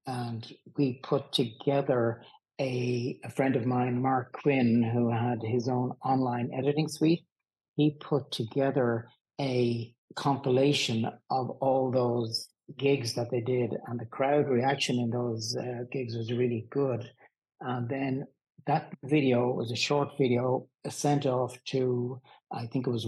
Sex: male